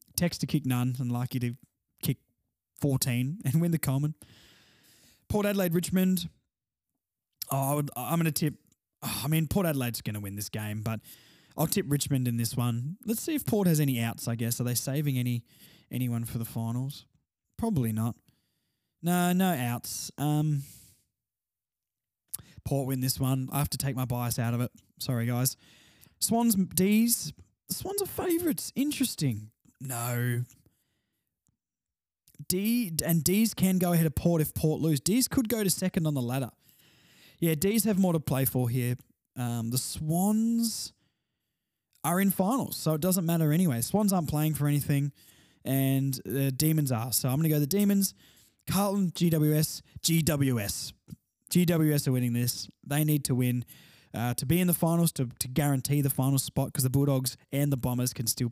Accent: Australian